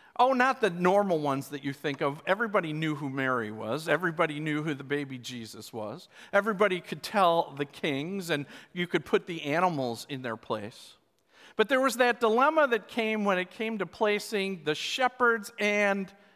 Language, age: English, 50-69